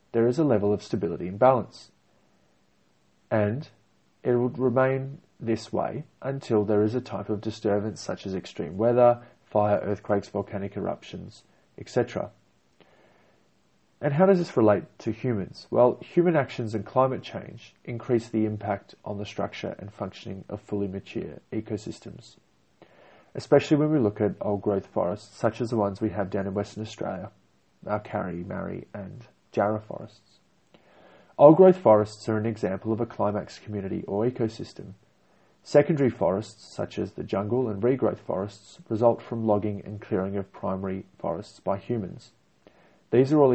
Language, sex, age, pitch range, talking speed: English, male, 30-49, 100-120 Hz, 155 wpm